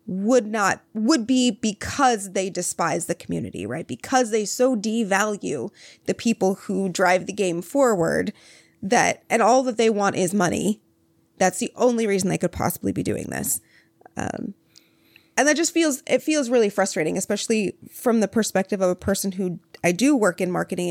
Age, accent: 20-39, American